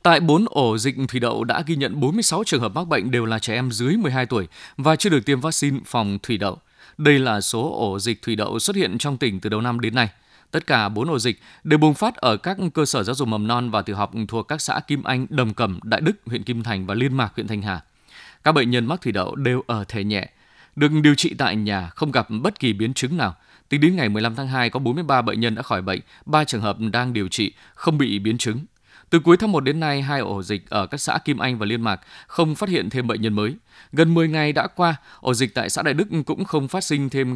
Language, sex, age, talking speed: Vietnamese, male, 20-39, 270 wpm